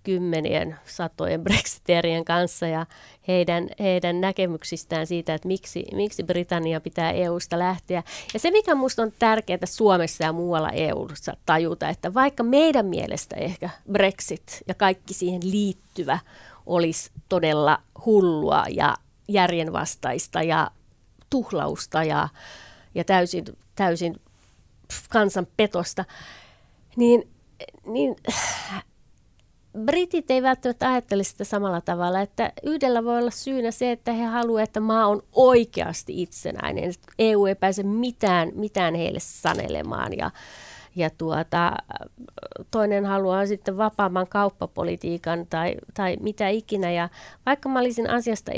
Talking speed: 120 wpm